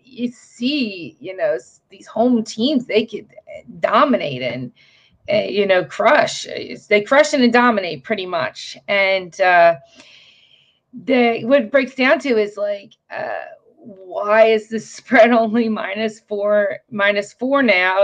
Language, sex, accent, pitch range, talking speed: English, female, American, 190-235 Hz, 140 wpm